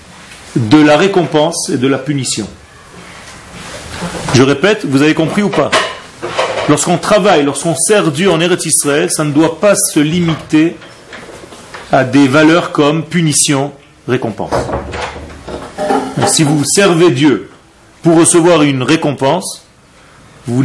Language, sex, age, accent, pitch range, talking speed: French, male, 40-59, French, 120-155 Hz, 130 wpm